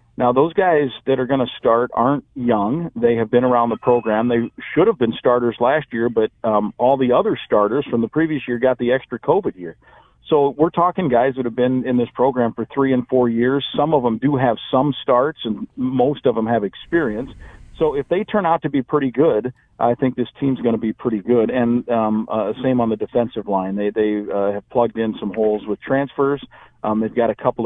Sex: male